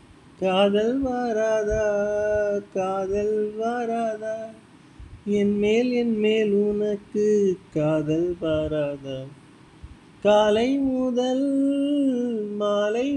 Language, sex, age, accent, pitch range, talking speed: Tamil, male, 30-49, native, 195-250 Hz, 65 wpm